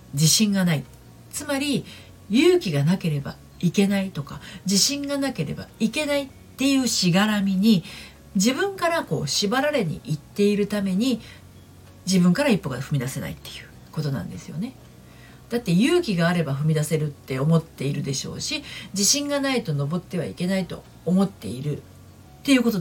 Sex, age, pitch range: female, 50-69, 150-240 Hz